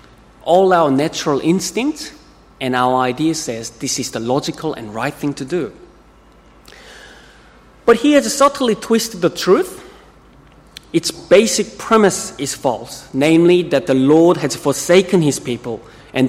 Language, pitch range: English, 135-175 Hz